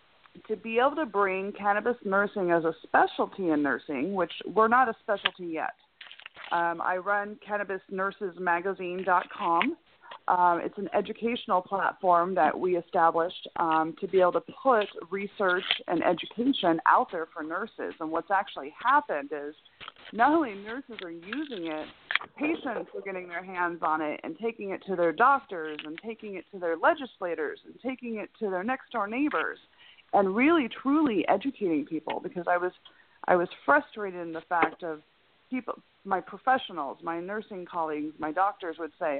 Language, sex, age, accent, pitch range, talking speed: English, female, 30-49, American, 175-260 Hz, 160 wpm